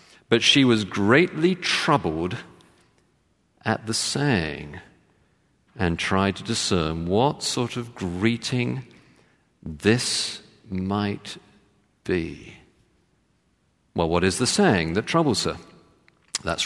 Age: 50-69